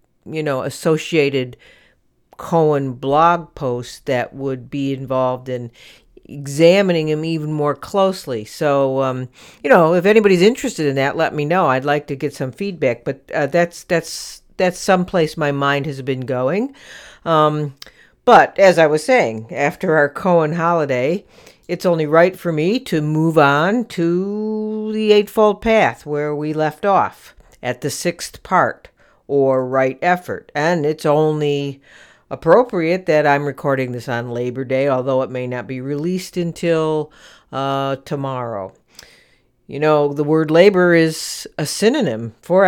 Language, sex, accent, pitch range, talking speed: English, female, American, 135-175 Hz, 150 wpm